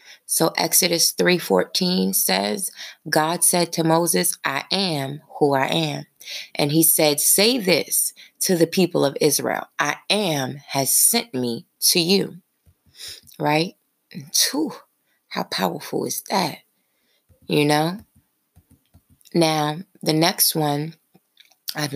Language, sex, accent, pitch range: English, female, American, 130-170 Hz